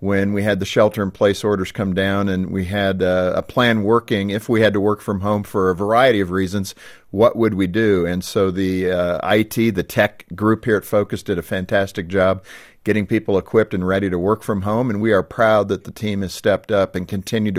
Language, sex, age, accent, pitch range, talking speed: English, male, 50-69, American, 95-115 Hz, 230 wpm